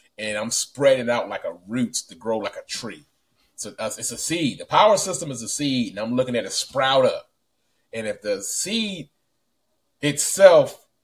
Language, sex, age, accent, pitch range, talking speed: English, male, 30-49, American, 115-165 Hz, 185 wpm